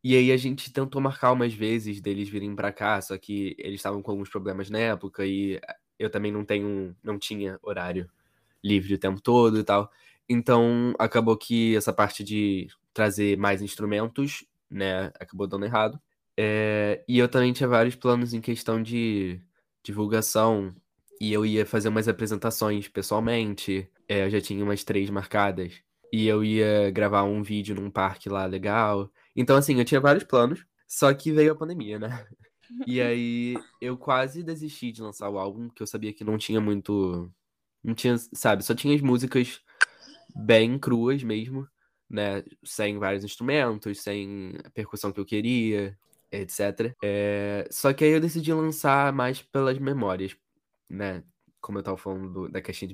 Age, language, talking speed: 10-29, Portuguese, 165 wpm